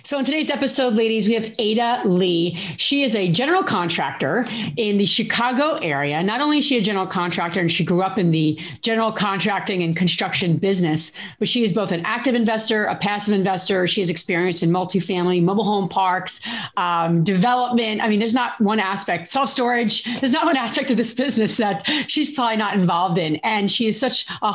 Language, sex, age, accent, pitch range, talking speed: English, female, 40-59, American, 180-235 Hz, 200 wpm